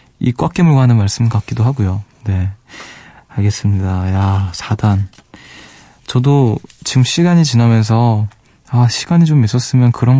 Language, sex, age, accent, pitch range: Korean, male, 20-39, native, 110-130 Hz